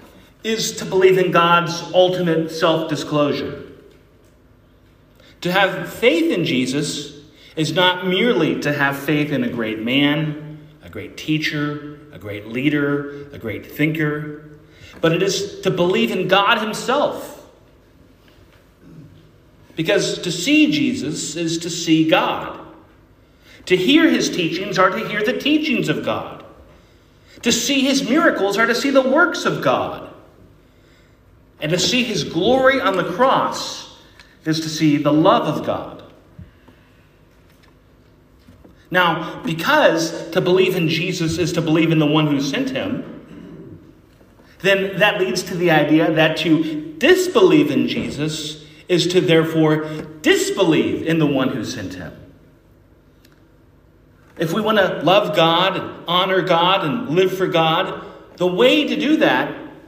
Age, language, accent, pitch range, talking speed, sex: 40-59, English, American, 155-210 Hz, 140 wpm, male